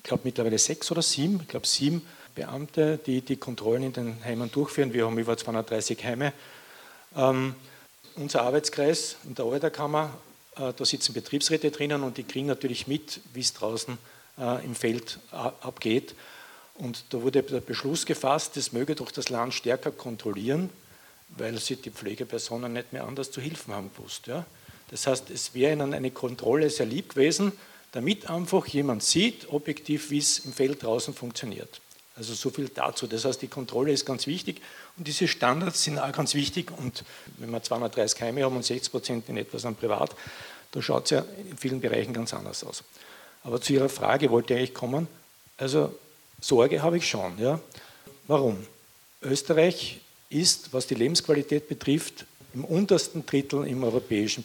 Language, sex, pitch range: German, male, 120-150 Hz